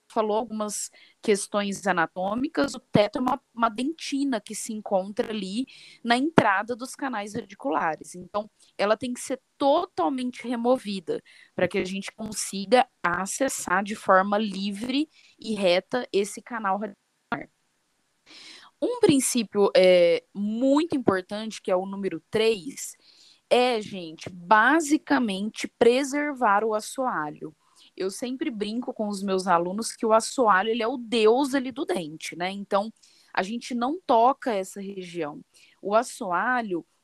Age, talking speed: 10-29, 135 wpm